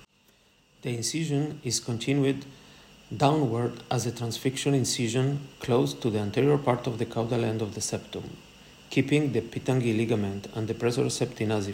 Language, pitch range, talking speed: English, 110-135 Hz, 145 wpm